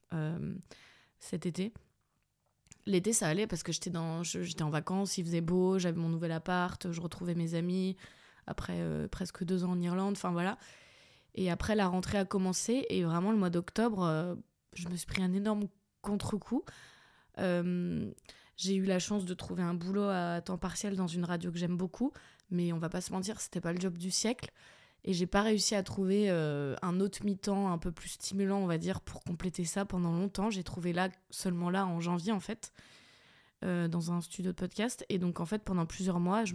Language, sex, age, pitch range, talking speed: French, female, 20-39, 175-200 Hz, 210 wpm